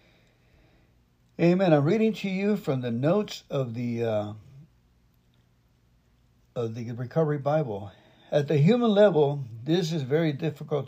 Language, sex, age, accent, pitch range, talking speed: English, male, 60-79, American, 120-160 Hz, 125 wpm